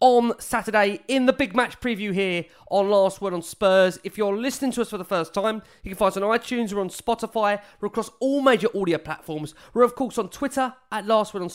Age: 30-49